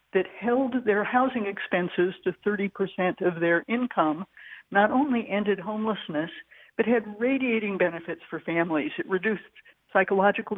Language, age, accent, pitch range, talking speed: English, 60-79, American, 185-235 Hz, 130 wpm